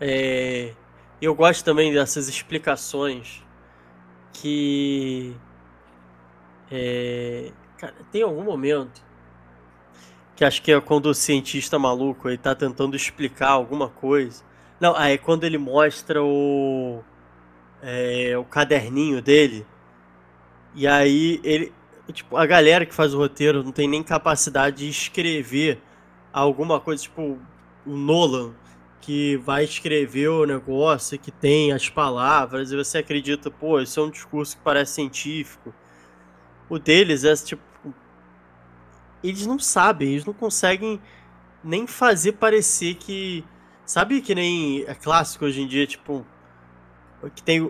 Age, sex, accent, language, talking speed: 20-39, male, Brazilian, Portuguese, 130 wpm